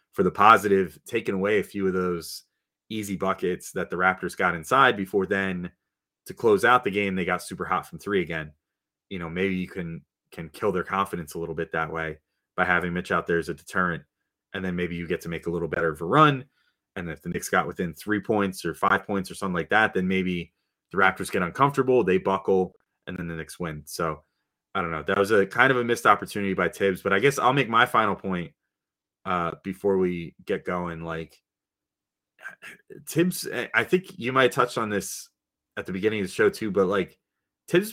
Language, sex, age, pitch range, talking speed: English, male, 20-39, 90-125 Hz, 220 wpm